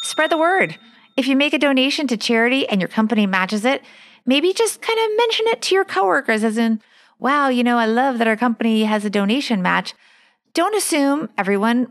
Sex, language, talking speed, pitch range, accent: female, English, 205 wpm, 210-265 Hz, American